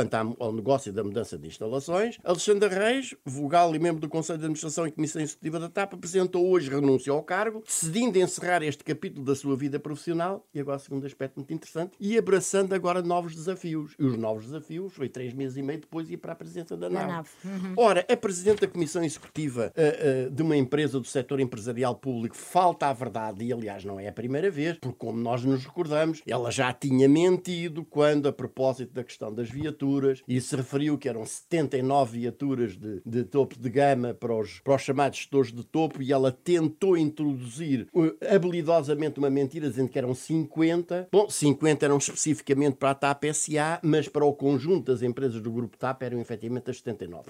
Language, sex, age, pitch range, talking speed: Portuguese, male, 60-79, 130-170 Hz, 195 wpm